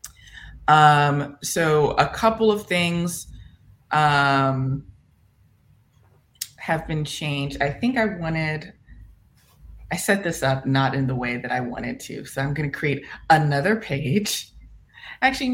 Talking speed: 130 wpm